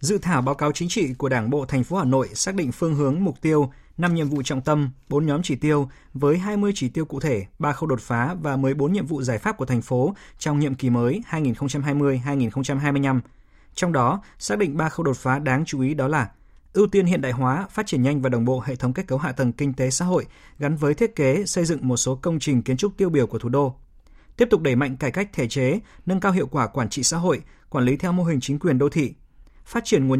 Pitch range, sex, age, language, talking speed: 130-165 Hz, male, 20-39, Vietnamese, 260 wpm